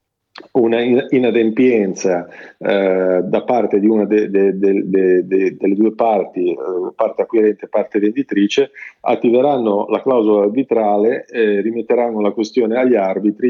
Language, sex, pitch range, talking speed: Italian, male, 100-120 Hz, 145 wpm